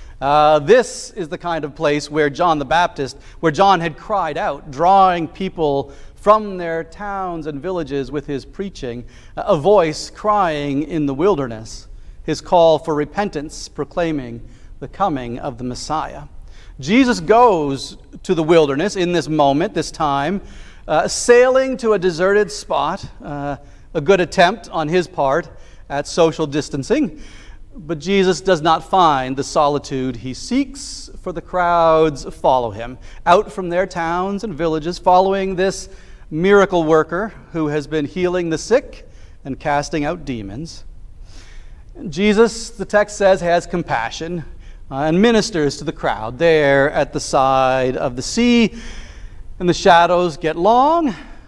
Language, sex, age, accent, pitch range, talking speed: English, male, 40-59, American, 140-190 Hz, 145 wpm